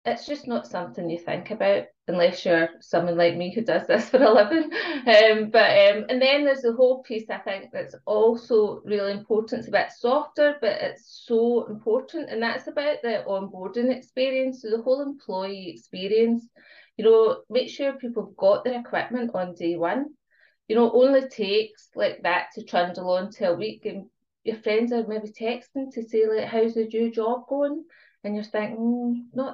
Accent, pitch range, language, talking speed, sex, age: British, 185-250 Hz, English, 190 wpm, female, 30-49